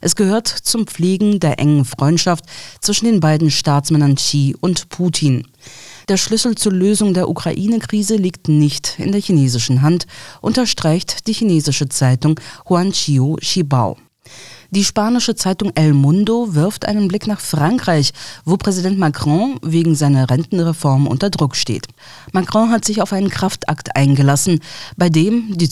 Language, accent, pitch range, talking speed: German, German, 140-195 Hz, 140 wpm